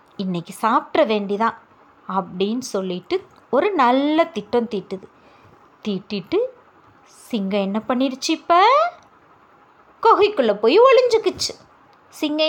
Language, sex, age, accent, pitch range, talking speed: English, female, 30-49, Indian, 220-330 Hz, 65 wpm